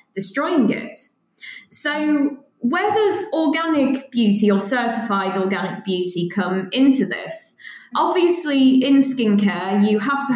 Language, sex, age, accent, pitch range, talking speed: English, female, 20-39, British, 195-260 Hz, 115 wpm